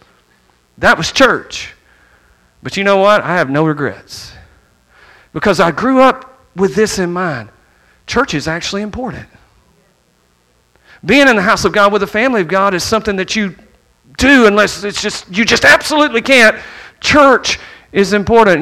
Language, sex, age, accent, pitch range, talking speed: English, male, 40-59, American, 145-210 Hz, 160 wpm